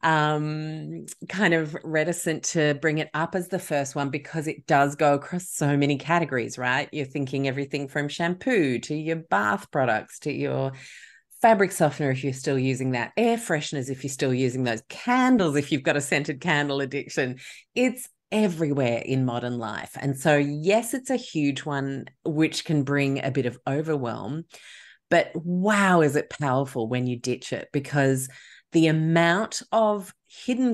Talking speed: 170 wpm